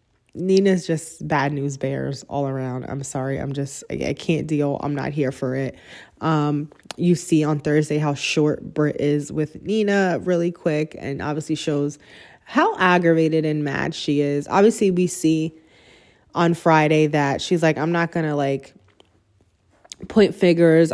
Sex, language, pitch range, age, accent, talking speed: female, English, 145-175 Hz, 20-39, American, 160 wpm